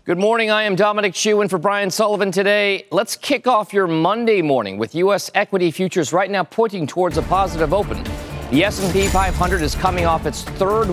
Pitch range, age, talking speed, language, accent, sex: 130-185 Hz, 40-59, 200 wpm, English, American, male